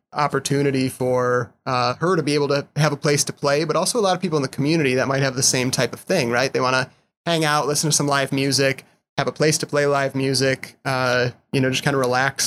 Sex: male